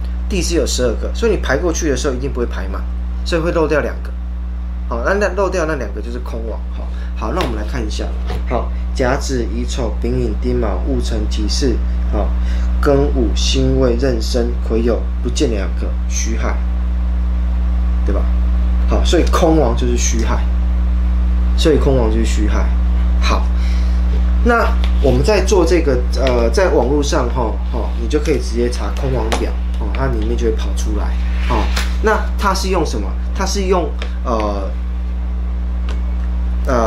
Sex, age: male, 20-39